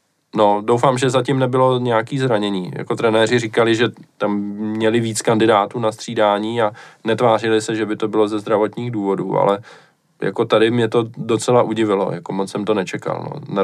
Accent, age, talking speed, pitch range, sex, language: native, 20-39, 180 wpm, 105-120 Hz, male, Czech